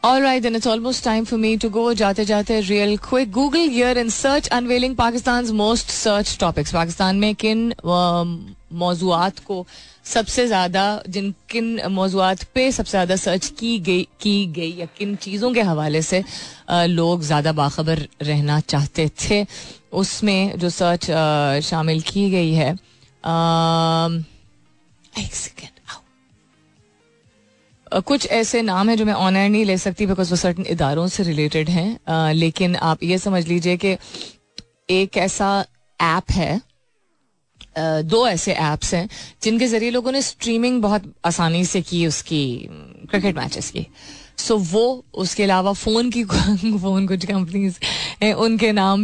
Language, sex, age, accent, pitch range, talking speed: Hindi, female, 30-49, native, 170-220 Hz, 150 wpm